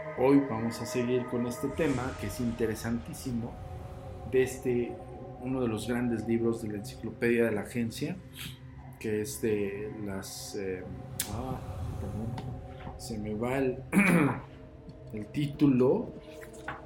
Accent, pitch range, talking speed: Mexican, 105-130 Hz, 130 wpm